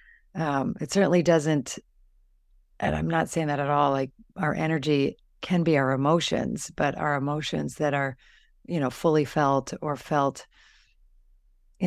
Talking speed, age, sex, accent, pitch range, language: 150 wpm, 50-69, female, American, 140-195 Hz, English